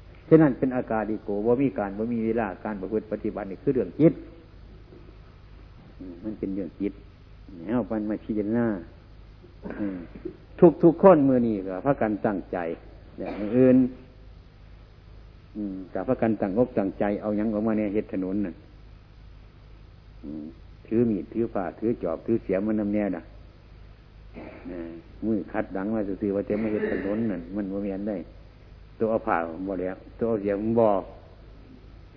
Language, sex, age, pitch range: Thai, male, 60-79, 95-115 Hz